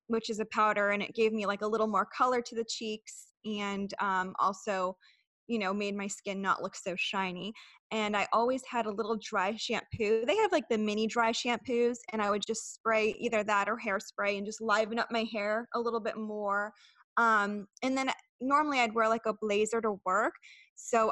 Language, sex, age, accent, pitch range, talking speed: English, female, 20-39, American, 200-235 Hz, 210 wpm